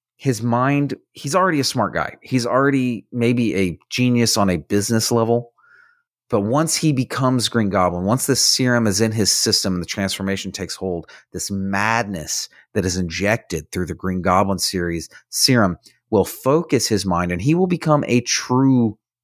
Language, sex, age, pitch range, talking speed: English, male, 30-49, 100-130 Hz, 170 wpm